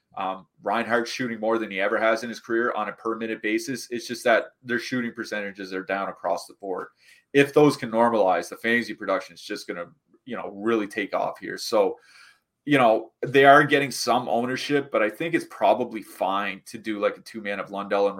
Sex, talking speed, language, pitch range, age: male, 220 wpm, English, 105-120 Hz, 30-49